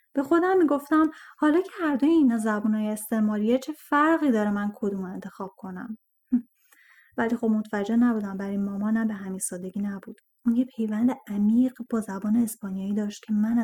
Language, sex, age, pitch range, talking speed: Persian, female, 10-29, 210-285 Hz, 165 wpm